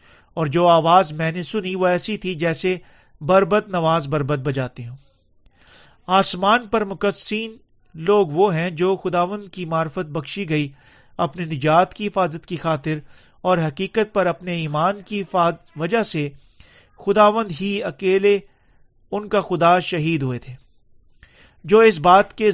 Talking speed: 145 wpm